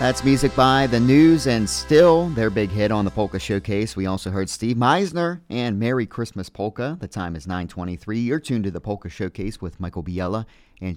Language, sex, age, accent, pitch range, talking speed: English, male, 40-59, American, 100-130 Hz, 200 wpm